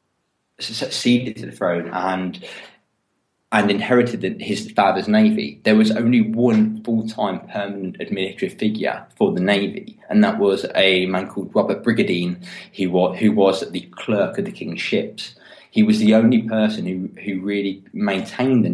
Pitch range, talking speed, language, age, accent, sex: 100-120 Hz, 160 wpm, English, 20-39, British, male